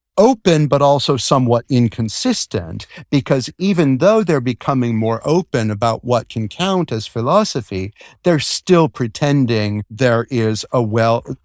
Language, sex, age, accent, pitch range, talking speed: English, male, 50-69, American, 110-145 Hz, 130 wpm